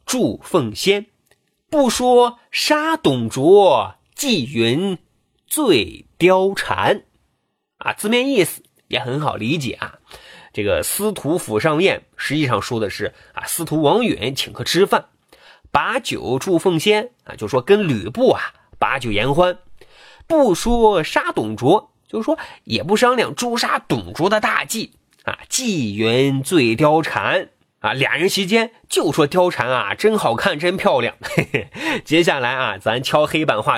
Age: 30-49